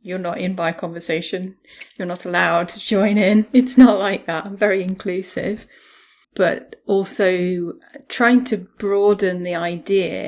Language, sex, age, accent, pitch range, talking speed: English, female, 30-49, British, 170-205 Hz, 145 wpm